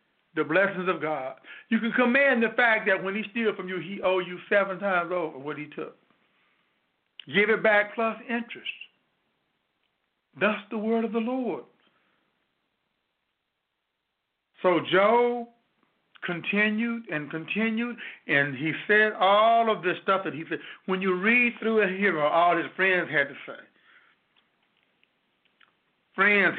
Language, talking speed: English, 140 wpm